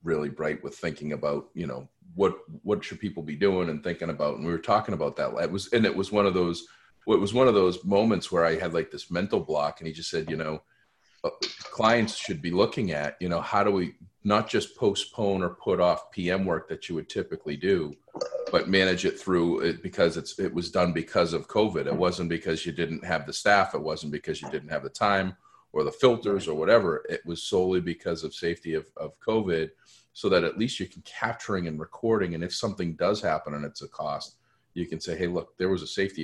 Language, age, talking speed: English, 40-59, 235 wpm